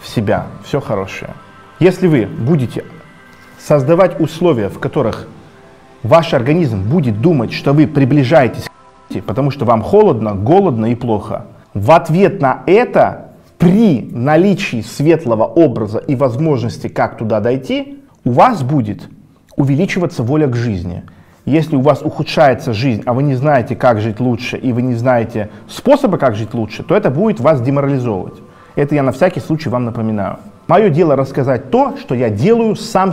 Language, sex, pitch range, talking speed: Russian, male, 120-170 Hz, 155 wpm